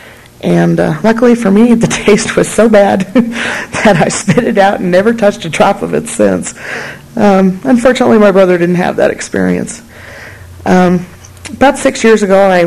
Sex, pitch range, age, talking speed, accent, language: female, 170-200 Hz, 40-59, 175 wpm, American, English